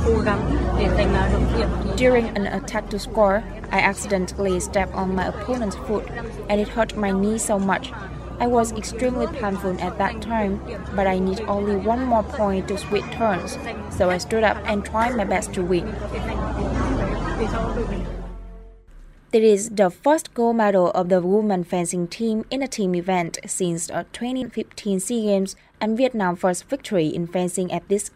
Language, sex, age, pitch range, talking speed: Vietnamese, female, 20-39, 185-220 Hz, 160 wpm